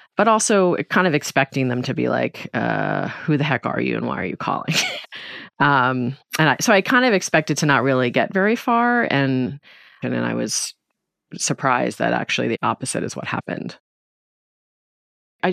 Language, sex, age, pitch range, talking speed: English, female, 30-49, 125-155 Hz, 180 wpm